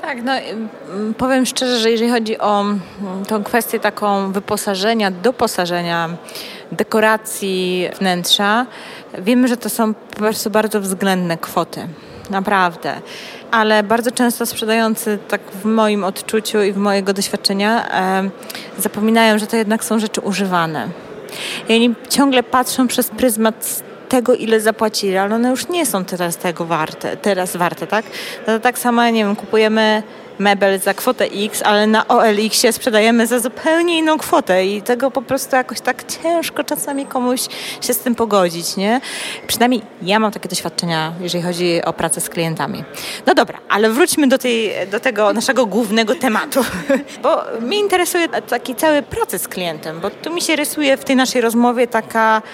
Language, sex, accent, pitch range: Polish, female, native, 200-245 Hz